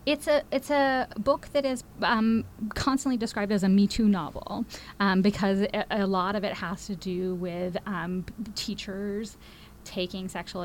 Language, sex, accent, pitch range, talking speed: English, female, American, 190-235 Hz, 165 wpm